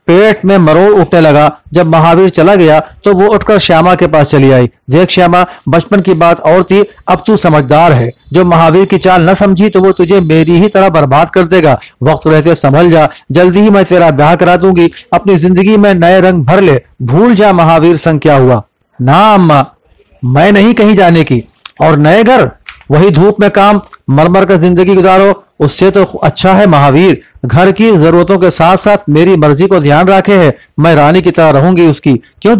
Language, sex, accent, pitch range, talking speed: Hindi, male, native, 160-195 Hz, 200 wpm